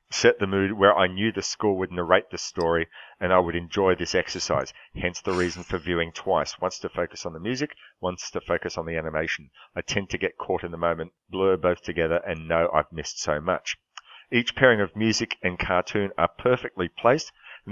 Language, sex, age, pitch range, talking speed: English, male, 40-59, 85-105 Hz, 215 wpm